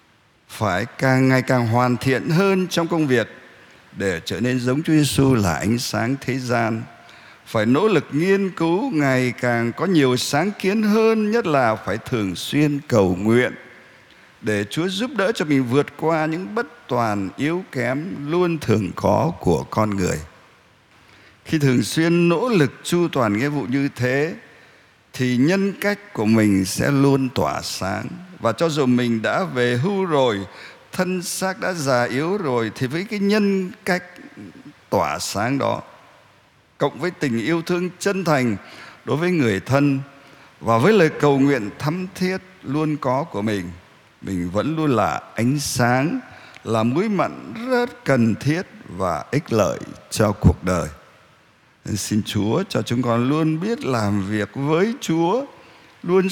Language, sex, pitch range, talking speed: Vietnamese, male, 115-170 Hz, 165 wpm